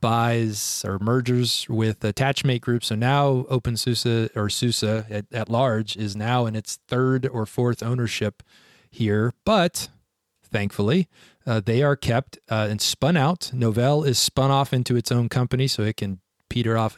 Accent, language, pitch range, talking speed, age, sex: American, English, 110-130 Hz, 165 wpm, 30-49, male